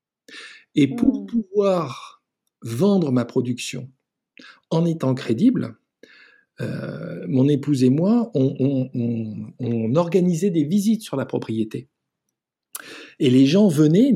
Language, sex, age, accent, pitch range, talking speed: French, male, 50-69, French, 125-185 Hz, 120 wpm